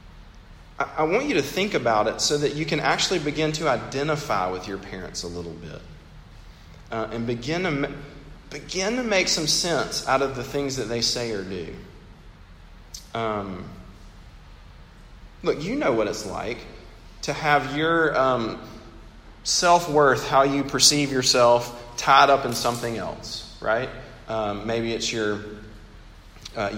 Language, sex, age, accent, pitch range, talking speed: English, male, 40-59, American, 100-140 Hz, 155 wpm